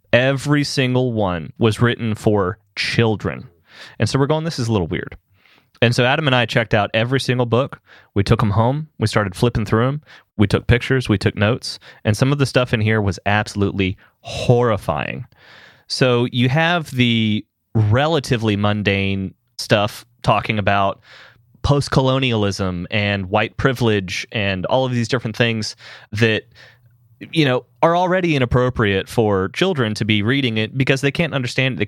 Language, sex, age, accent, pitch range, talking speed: English, male, 30-49, American, 105-135 Hz, 165 wpm